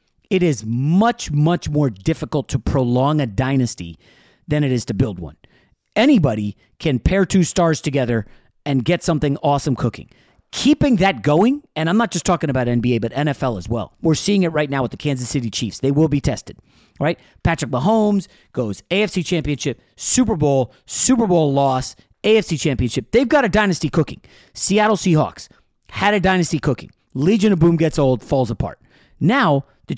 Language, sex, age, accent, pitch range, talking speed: English, male, 40-59, American, 130-180 Hz, 175 wpm